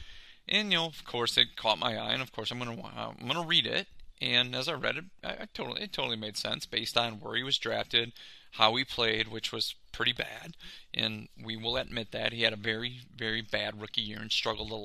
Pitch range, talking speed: 115-130 Hz, 240 wpm